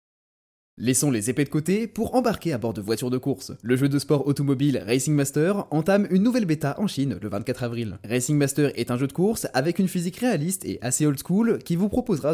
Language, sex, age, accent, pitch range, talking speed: French, male, 20-39, French, 125-180 Hz, 230 wpm